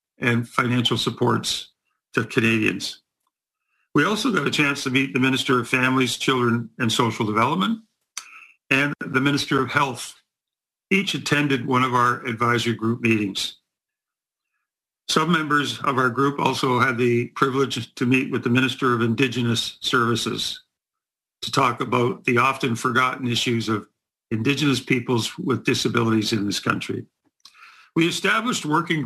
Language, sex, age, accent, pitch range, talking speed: English, male, 50-69, American, 120-145 Hz, 140 wpm